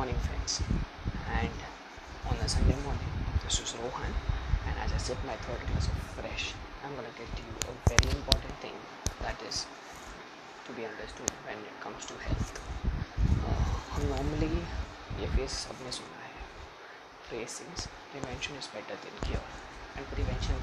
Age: 30-49